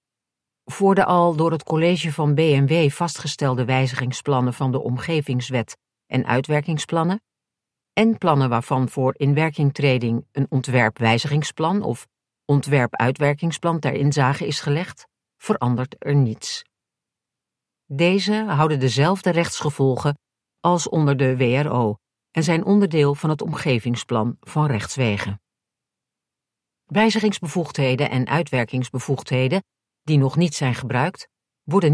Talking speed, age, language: 105 wpm, 50-69, Dutch